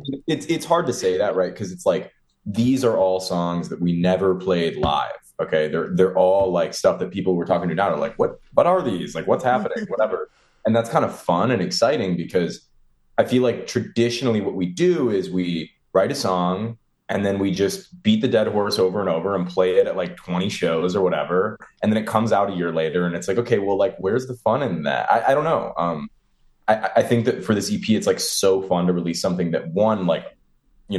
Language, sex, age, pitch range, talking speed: English, male, 20-39, 85-115 Hz, 235 wpm